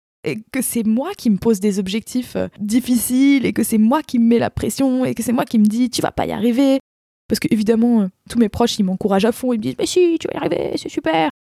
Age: 20-39